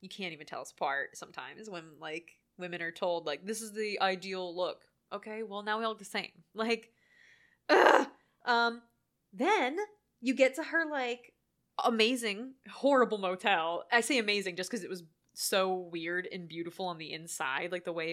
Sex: female